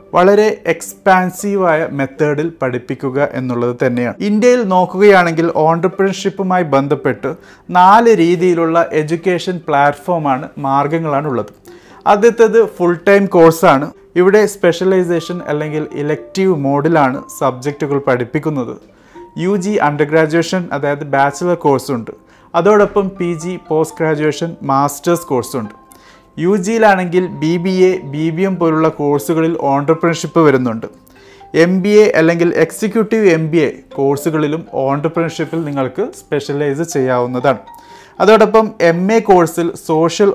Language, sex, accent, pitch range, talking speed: Malayalam, male, native, 145-185 Hz, 105 wpm